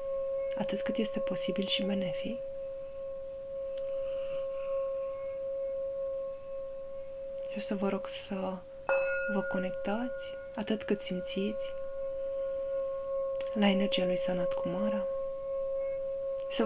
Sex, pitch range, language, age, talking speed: female, 185-275 Hz, Romanian, 20-39, 80 wpm